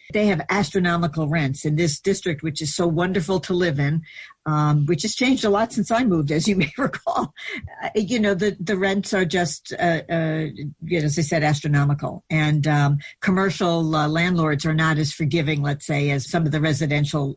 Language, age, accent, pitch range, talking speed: English, 60-79, American, 150-185 Hz, 205 wpm